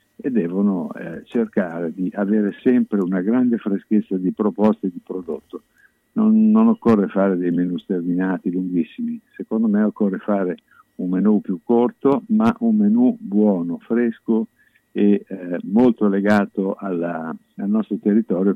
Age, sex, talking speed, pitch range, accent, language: 50-69, male, 135 wpm, 90-115 Hz, native, Italian